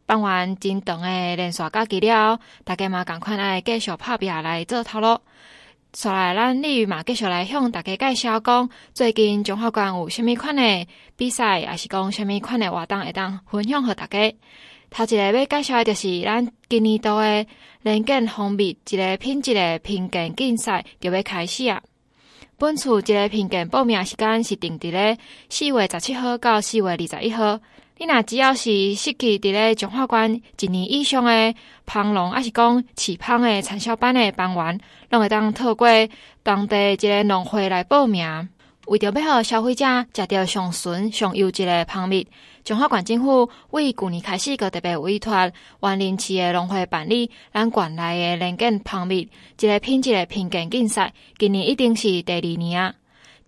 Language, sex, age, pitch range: Chinese, female, 20-39, 190-235 Hz